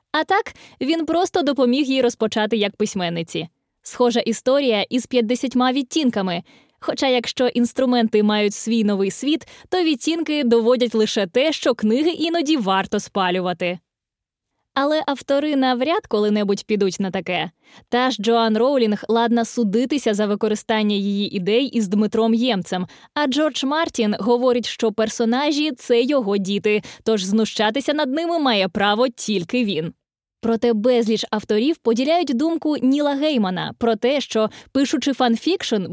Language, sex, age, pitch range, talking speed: Ukrainian, female, 20-39, 210-275 Hz, 135 wpm